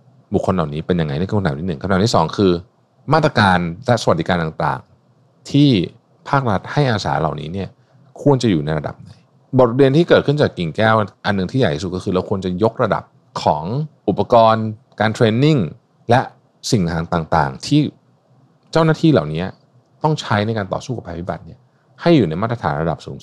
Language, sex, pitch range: Thai, male, 90-135 Hz